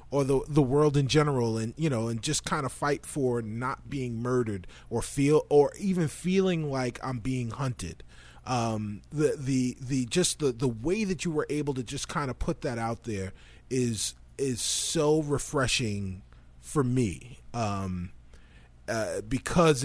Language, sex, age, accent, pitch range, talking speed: English, male, 30-49, American, 115-155 Hz, 170 wpm